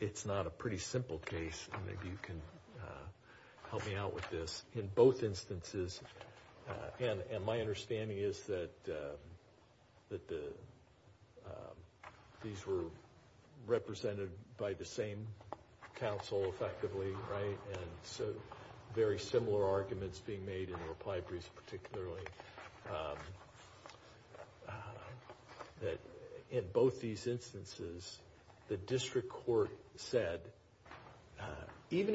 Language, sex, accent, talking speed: English, male, American, 120 wpm